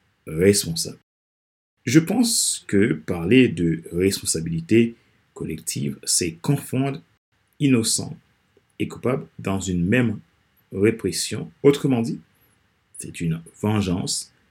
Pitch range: 95-140 Hz